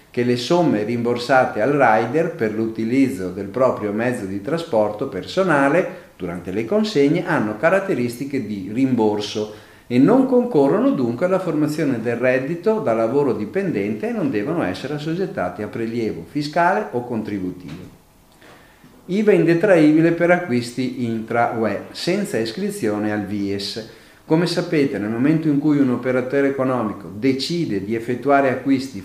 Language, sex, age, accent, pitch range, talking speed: Italian, male, 40-59, native, 105-150 Hz, 130 wpm